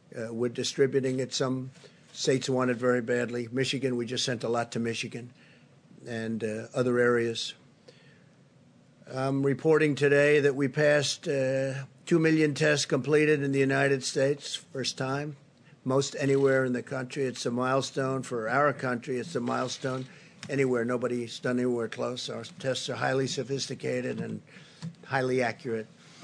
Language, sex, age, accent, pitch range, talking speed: English, male, 50-69, American, 130-150 Hz, 150 wpm